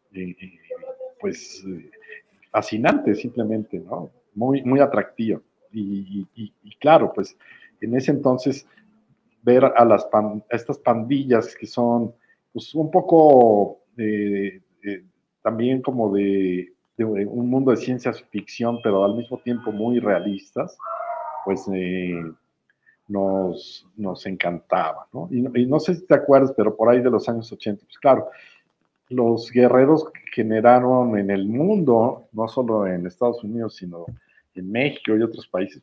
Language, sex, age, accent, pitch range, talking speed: Spanish, male, 50-69, Mexican, 100-125 Hz, 145 wpm